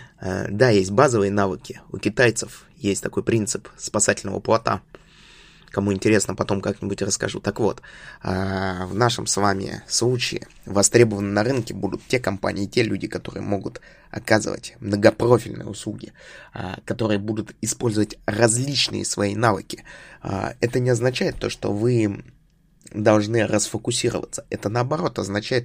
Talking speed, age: 125 wpm, 20-39